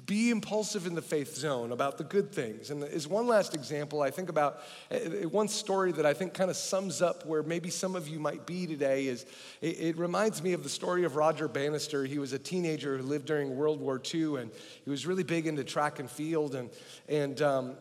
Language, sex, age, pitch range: English, male, 40-59, 145-180 Hz